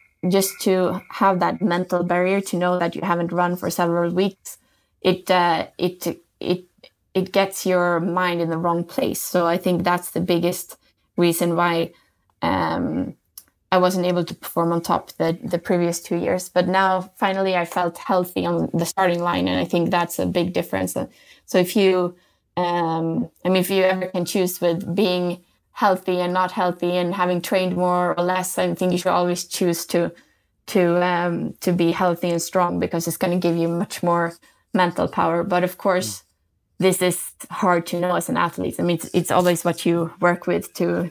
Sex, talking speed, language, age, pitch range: female, 195 wpm, Swedish, 20-39, 170-185 Hz